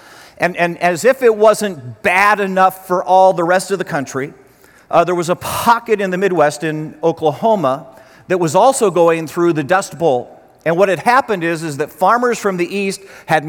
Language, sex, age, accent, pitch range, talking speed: English, male, 40-59, American, 155-195 Hz, 200 wpm